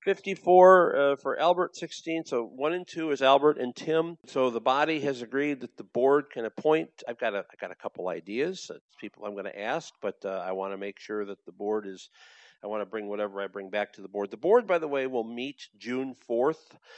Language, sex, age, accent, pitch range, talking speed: English, male, 50-69, American, 105-150 Hz, 235 wpm